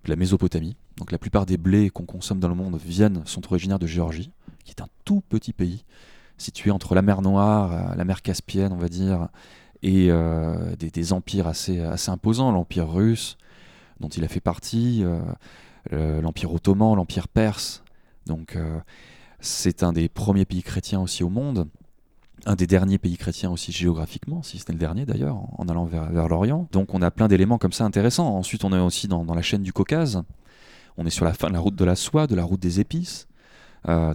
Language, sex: French, male